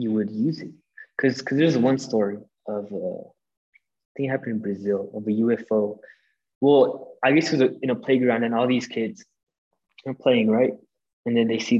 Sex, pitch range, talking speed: male, 110-135 Hz, 195 wpm